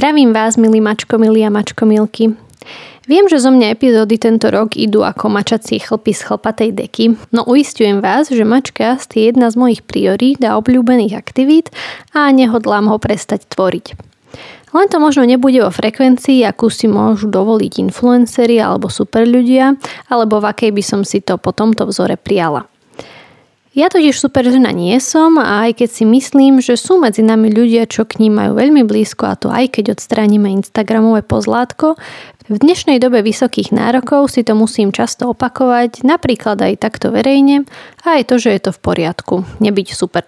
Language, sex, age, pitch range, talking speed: Slovak, female, 20-39, 215-255 Hz, 175 wpm